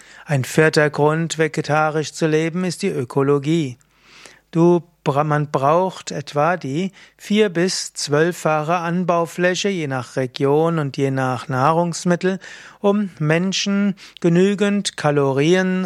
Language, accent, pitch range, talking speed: German, German, 145-180 Hz, 110 wpm